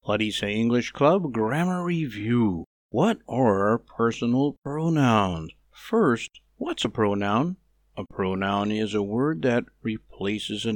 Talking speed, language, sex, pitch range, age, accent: 125 wpm, English, male, 100-125 Hz, 50-69, American